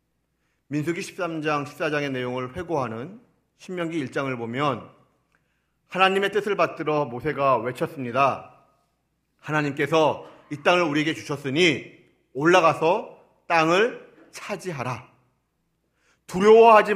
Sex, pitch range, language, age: male, 135-175 Hz, Korean, 40-59